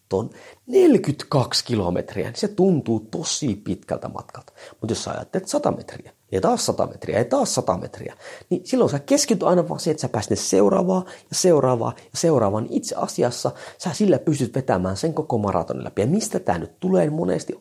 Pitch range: 105-170 Hz